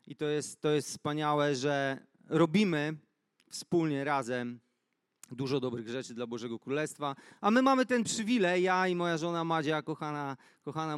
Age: 30-49